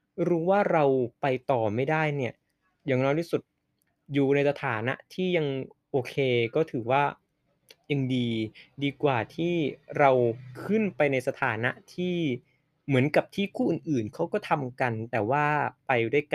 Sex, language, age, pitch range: male, Thai, 20-39, 130-155 Hz